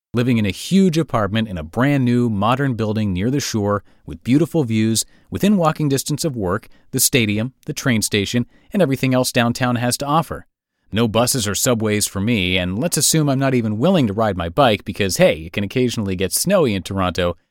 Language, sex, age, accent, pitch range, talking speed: English, male, 30-49, American, 100-140 Hz, 205 wpm